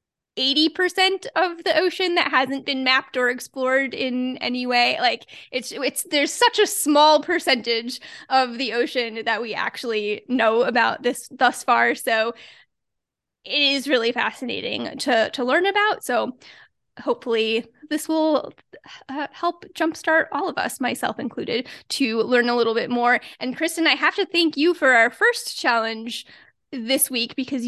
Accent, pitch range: American, 235-285 Hz